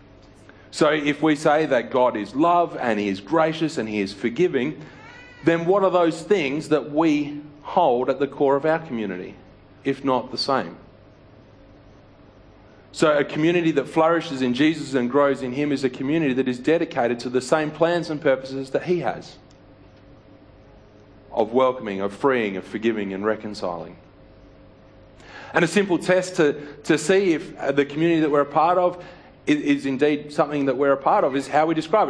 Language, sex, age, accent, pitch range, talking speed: English, male, 40-59, Australian, 115-160 Hz, 180 wpm